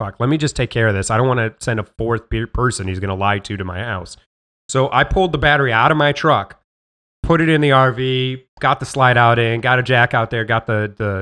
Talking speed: 275 wpm